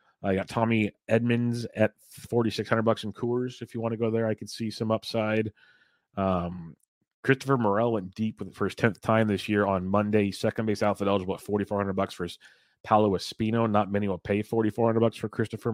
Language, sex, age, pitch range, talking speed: English, male, 30-49, 100-115 Hz, 200 wpm